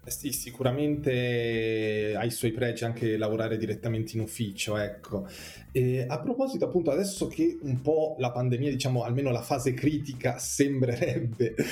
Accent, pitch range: native, 115-135 Hz